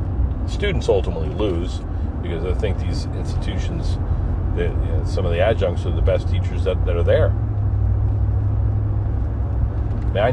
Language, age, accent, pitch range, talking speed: English, 40-59, American, 85-95 Hz, 120 wpm